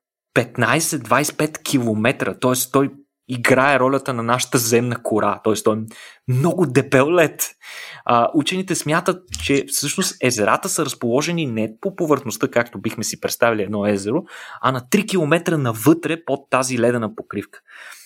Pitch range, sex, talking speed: 120-160 Hz, male, 135 wpm